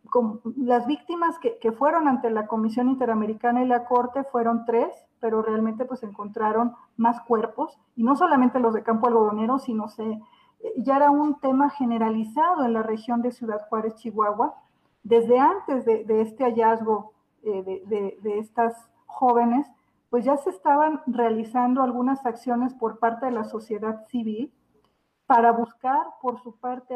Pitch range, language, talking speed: 225-260 Hz, Spanish, 160 wpm